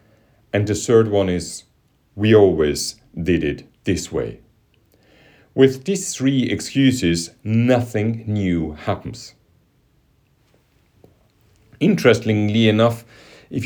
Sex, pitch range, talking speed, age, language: male, 95-120 Hz, 90 wpm, 40-59, English